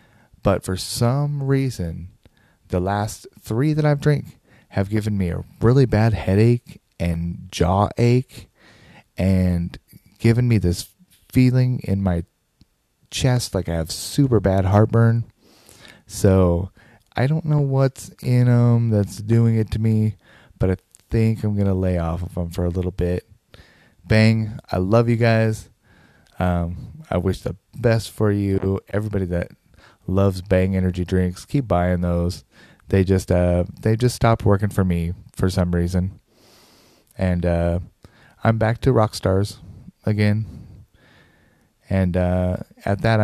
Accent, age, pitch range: American, 30-49, 90-115 Hz